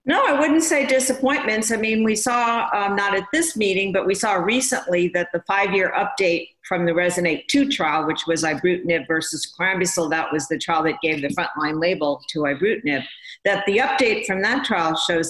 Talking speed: 195 wpm